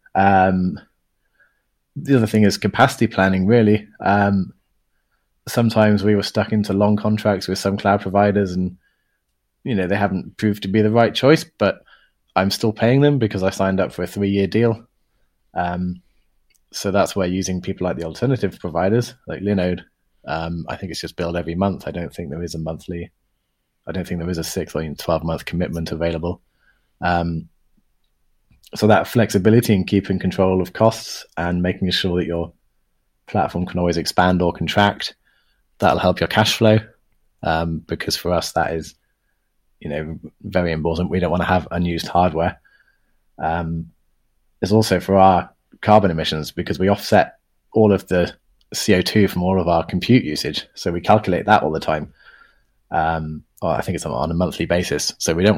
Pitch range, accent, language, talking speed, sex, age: 85-105 Hz, British, English, 175 wpm, male, 20-39